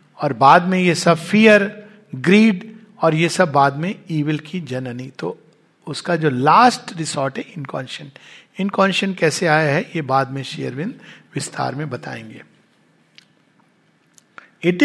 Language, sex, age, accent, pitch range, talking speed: Hindi, male, 60-79, native, 150-200 Hz, 135 wpm